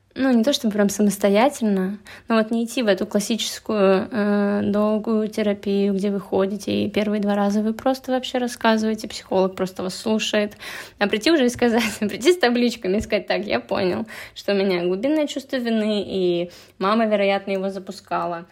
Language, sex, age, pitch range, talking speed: Russian, female, 20-39, 200-240 Hz, 180 wpm